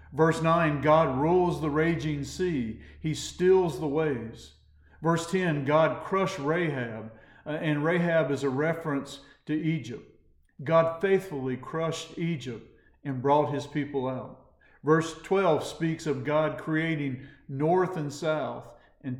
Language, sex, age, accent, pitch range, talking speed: English, male, 50-69, American, 135-160 Hz, 135 wpm